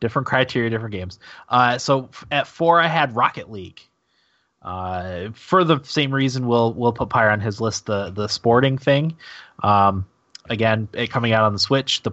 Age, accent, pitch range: 20-39, American, 95-125 Hz